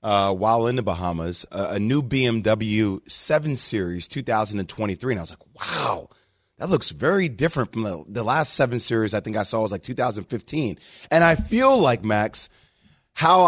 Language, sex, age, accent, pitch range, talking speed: English, male, 30-49, American, 125-165 Hz, 180 wpm